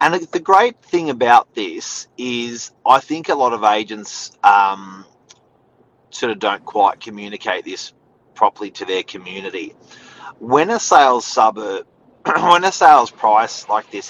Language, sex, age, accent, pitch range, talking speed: English, male, 30-49, Australian, 105-155 Hz, 145 wpm